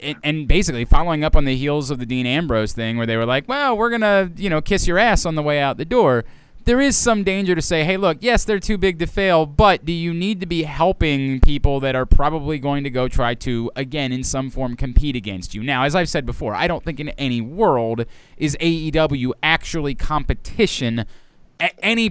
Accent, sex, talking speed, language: American, male, 230 wpm, English